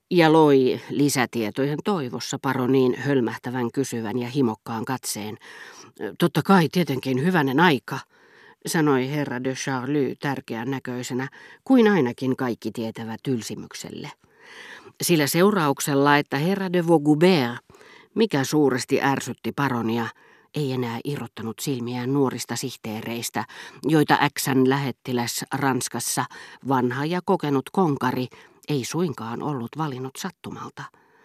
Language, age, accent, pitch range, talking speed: Finnish, 50-69, native, 125-155 Hz, 105 wpm